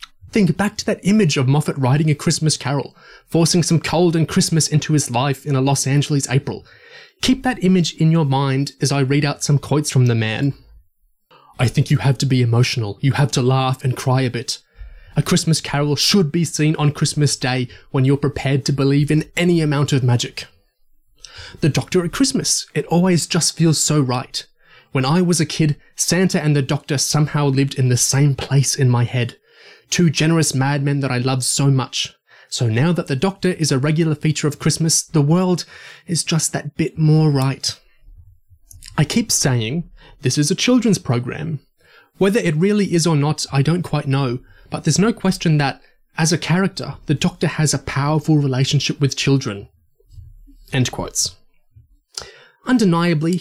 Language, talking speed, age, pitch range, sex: English, 185 wpm, 20-39, 135-170 Hz, male